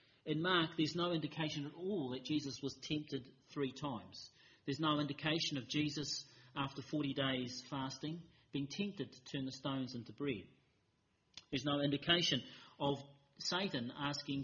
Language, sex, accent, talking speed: English, male, Australian, 150 wpm